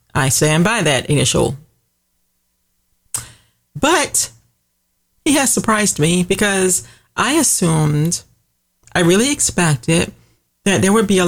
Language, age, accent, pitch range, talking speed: English, 40-59, American, 150-205 Hz, 110 wpm